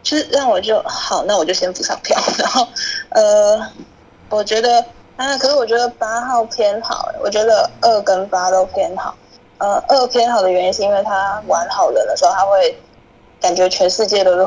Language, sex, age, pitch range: Chinese, female, 10-29, 185-245 Hz